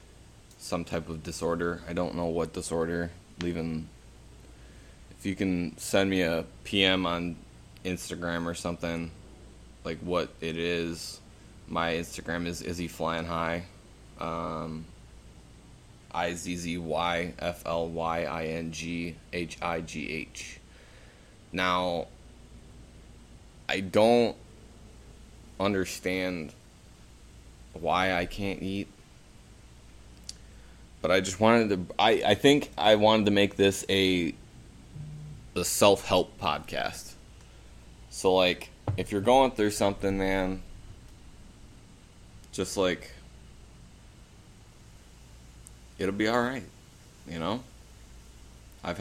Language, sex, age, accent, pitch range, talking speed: English, male, 20-39, American, 80-95 Hz, 105 wpm